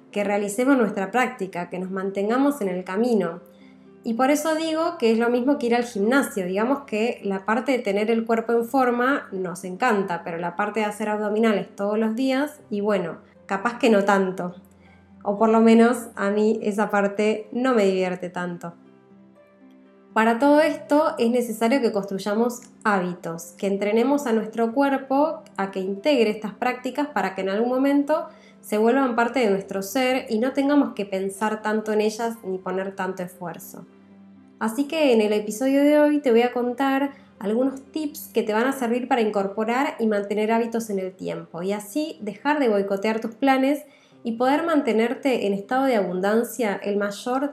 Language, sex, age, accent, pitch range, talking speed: Spanish, female, 20-39, Argentinian, 195-250 Hz, 180 wpm